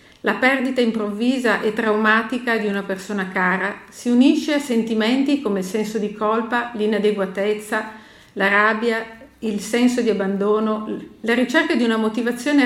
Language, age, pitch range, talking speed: Italian, 50-69, 210-250 Hz, 140 wpm